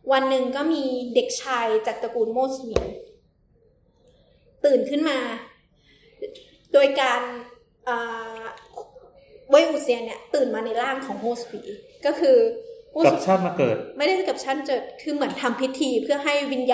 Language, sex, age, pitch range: Thai, female, 20-39, 235-280 Hz